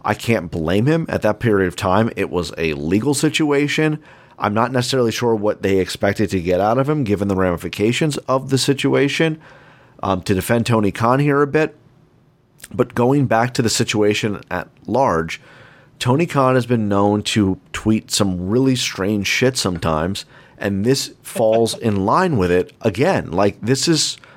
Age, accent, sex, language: 40-59, American, male, English